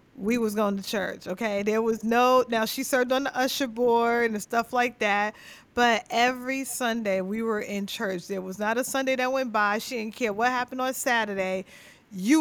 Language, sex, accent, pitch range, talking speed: English, female, American, 210-260 Hz, 210 wpm